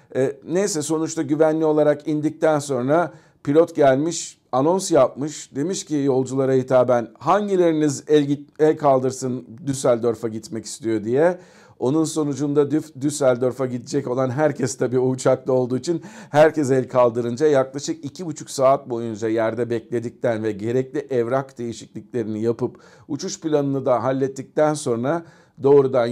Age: 50-69